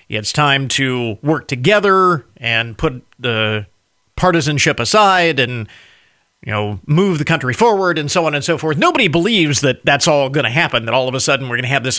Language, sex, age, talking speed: English, male, 40-59, 210 wpm